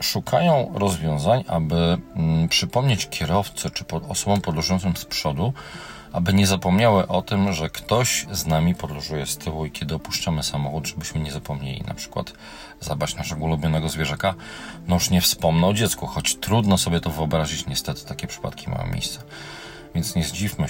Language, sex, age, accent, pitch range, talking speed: Polish, male, 40-59, native, 75-95 Hz, 155 wpm